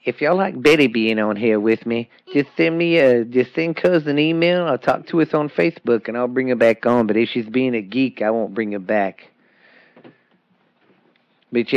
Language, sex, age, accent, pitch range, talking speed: English, male, 40-59, American, 110-125 Hz, 215 wpm